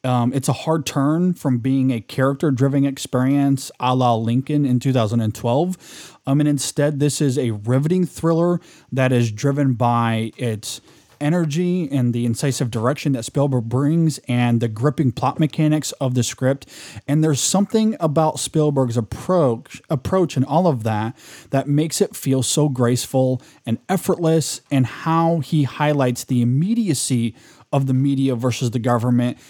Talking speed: 155 wpm